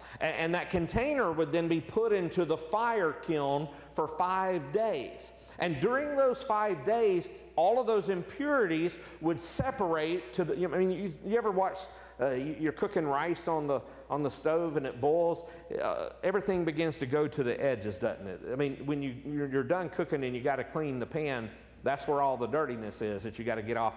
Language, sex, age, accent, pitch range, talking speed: English, male, 50-69, American, 130-180 Hz, 205 wpm